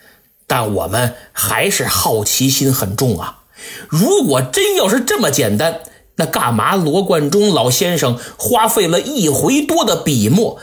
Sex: male